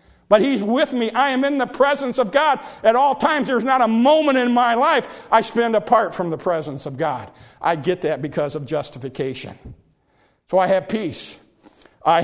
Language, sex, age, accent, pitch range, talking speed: English, male, 50-69, American, 140-180 Hz, 195 wpm